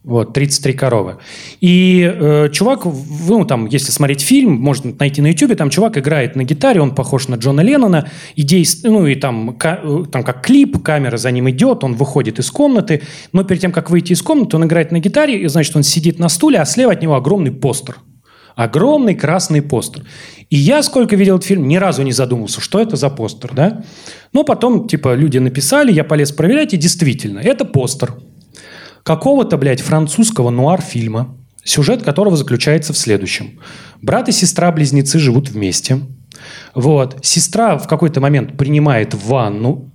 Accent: native